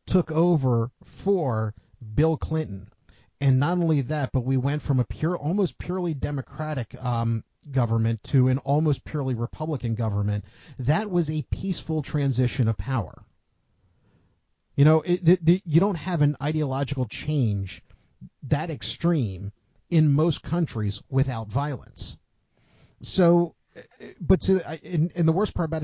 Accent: American